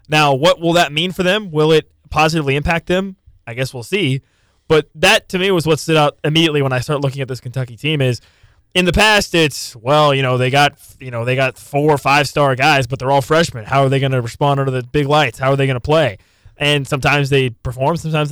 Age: 20-39